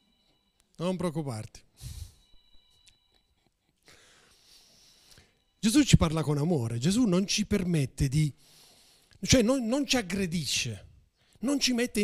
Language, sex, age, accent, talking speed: Italian, male, 30-49, native, 100 wpm